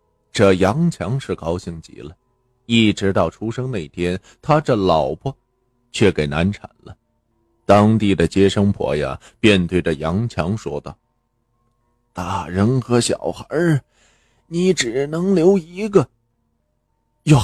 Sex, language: male, Chinese